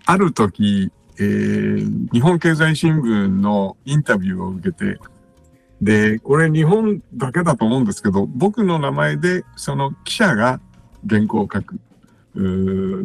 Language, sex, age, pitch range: Japanese, male, 60-79, 105-165 Hz